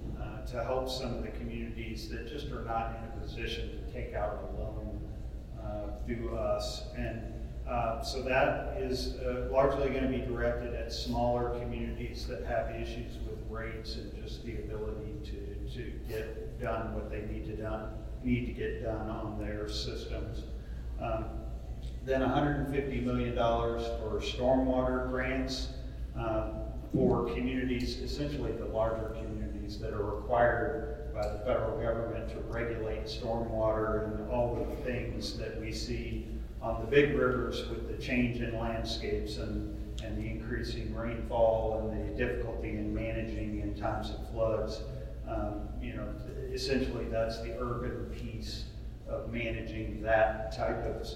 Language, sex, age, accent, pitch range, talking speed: English, male, 40-59, American, 110-120 Hz, 150 wpm